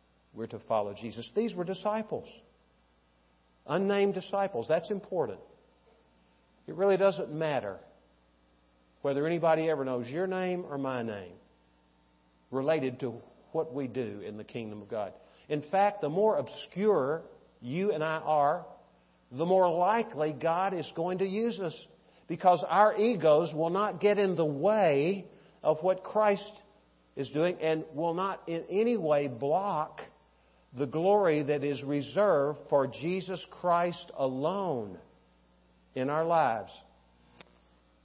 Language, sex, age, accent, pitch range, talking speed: English, male, 50-69, American, 105-170 Hz, 135 wpm